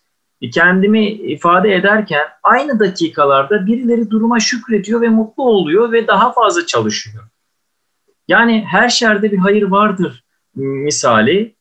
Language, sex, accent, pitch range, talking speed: Turkish, male, native, 150-215 Hz, 115 wpm